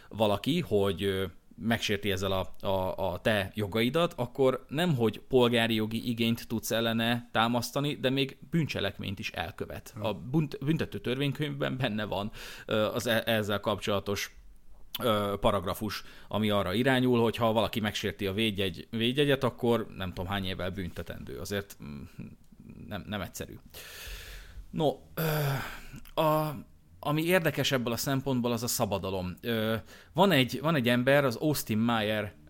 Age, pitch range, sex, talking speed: 30-49, 100-125 Hz, male, 130 wpm